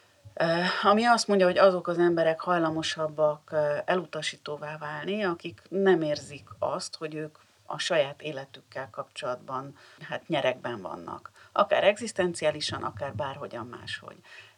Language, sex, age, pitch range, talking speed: Hungarian, female, 40-59, 150-195 Hz, 115 wpm